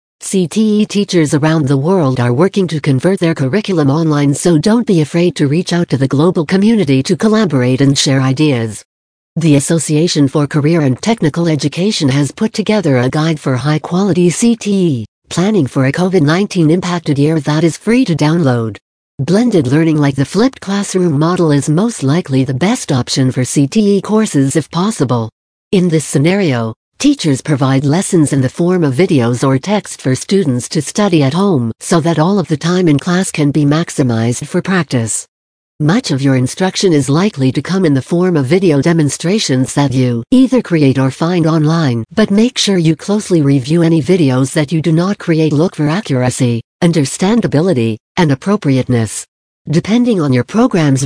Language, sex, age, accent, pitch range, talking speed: English, female, 60-79, American, 135-185 Hz, 175 wpm